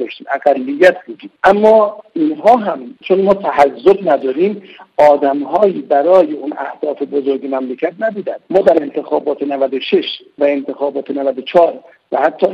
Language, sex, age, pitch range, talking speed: Persian, male, 50-69, 145-220 Hz, 125 wpm